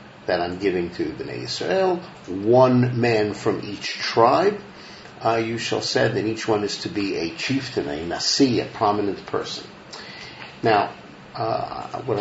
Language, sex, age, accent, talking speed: English, male, 50-69, American, 150 wpm